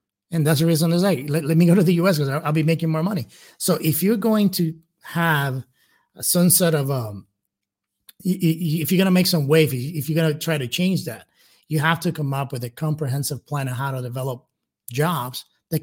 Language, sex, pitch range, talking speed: English, male, 140-170 Hz, 230 wpm